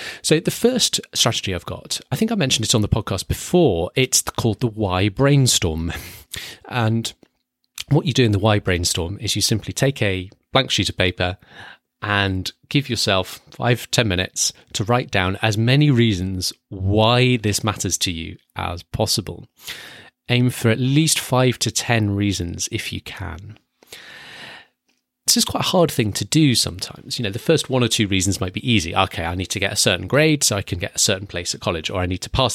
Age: 30-49